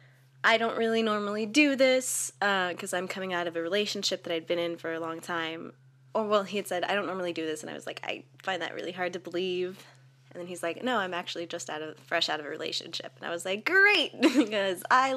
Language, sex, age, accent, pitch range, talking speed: English, female, 20-39, American, 160-205 Hz, 255 wpm